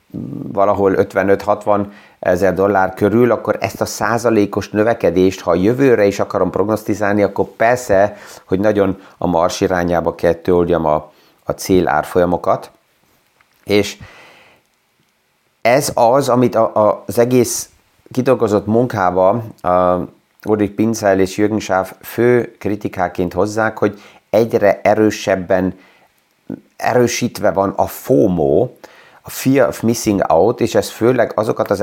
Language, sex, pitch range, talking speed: Hungarian, male, 95-110 Hz, 120 wpm